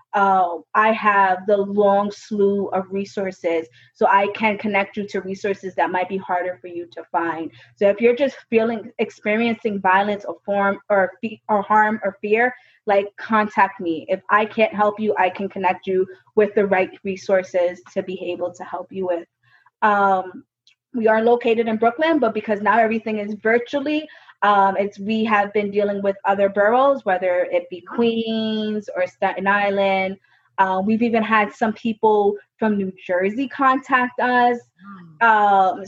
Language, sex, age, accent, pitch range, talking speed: English, female, 20-39, American, 190-220 Hz, 170 wpm